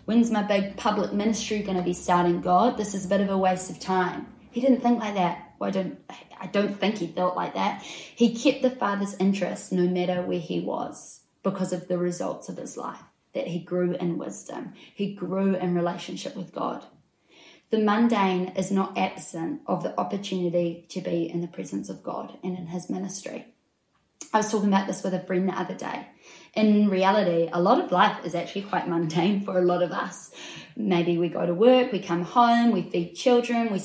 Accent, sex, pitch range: Australian, female, 180-220 Hz